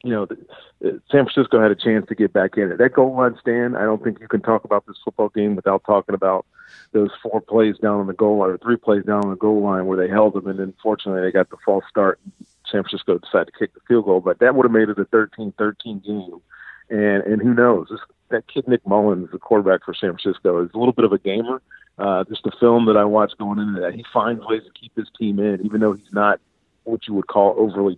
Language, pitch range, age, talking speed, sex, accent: English, 100-115 Hz, 50-69, 265 wpm, male, American